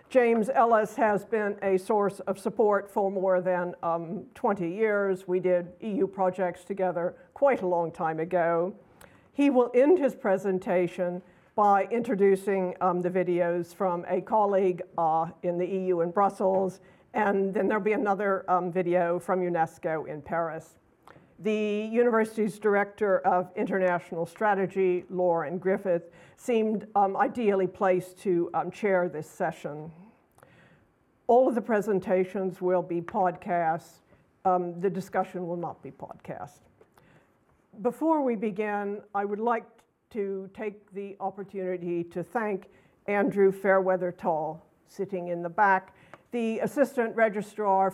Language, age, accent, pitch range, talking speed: English, 50-69, American, 180-210 Hz, 135 wpm